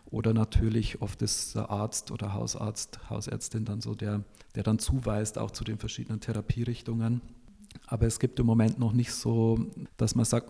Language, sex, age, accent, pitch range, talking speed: German, male, 40-59, German, 110-120 Hz, 175 wpm